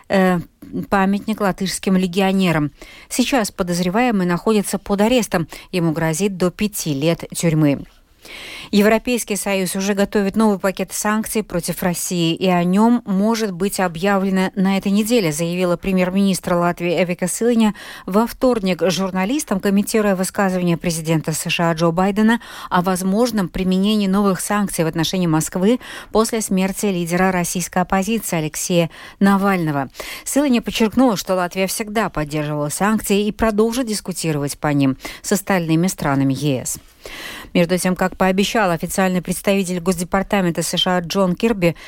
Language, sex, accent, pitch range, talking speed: Russian, female, native, 170-210 Hz, 125 wpm